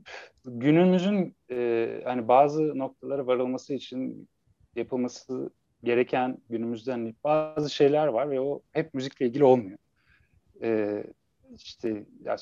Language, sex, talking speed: Turkish, male, 105 wpm